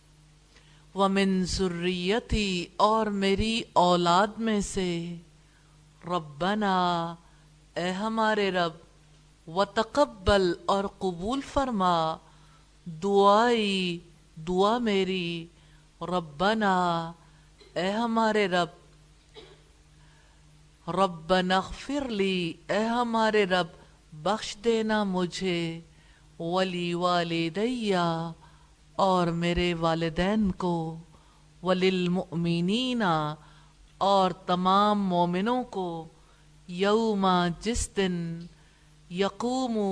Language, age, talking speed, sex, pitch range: English, 50-69, 70 wpm, female, 155-195 Hz